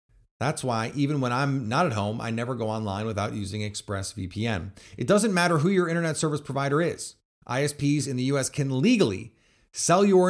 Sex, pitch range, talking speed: male, 115-165 Hz, 185 wpm